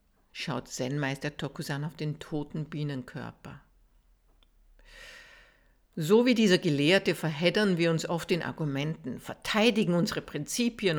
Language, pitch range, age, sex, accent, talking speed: German, 140-195 Hz, 60-79, female, Austrian, 110 wpm